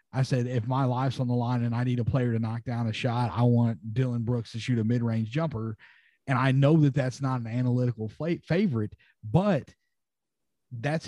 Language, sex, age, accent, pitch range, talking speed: English, male, 30-49, American, 120-150 Hz, 205 wpm